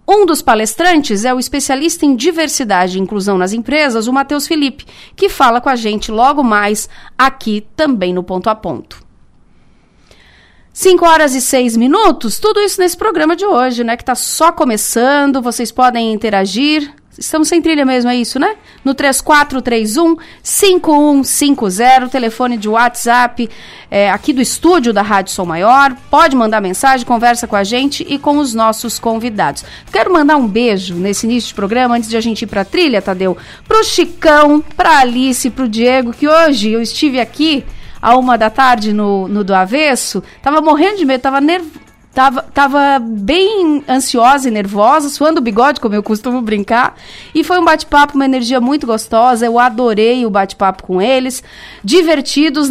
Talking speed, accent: 170 wpm, Brazilian